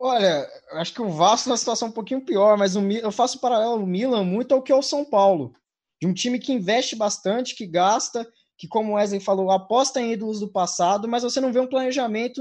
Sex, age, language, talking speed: male, 20-39, Portuguese, 235 wpm